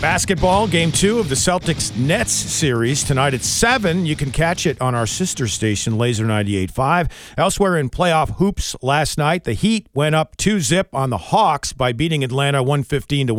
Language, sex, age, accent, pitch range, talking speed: English, male, 50-69, American, 125-185 Hz, 185 wpm